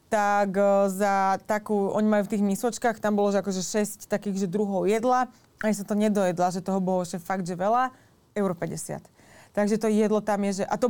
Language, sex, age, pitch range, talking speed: Slovak, female, 20-39, 195-215 Hz, 205 wpm